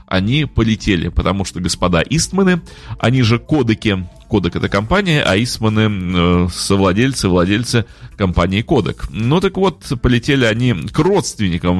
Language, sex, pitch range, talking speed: Russian, male, 95-145 Hz, 130 wpm